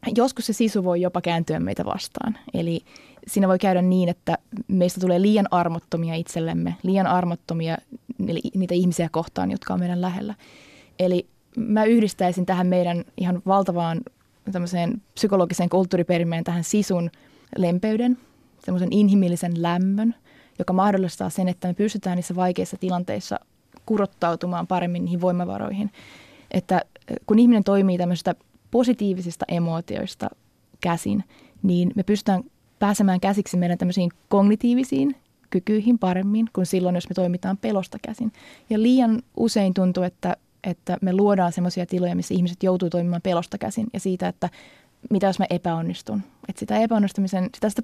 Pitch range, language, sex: 175-210 Hz, Finnish, female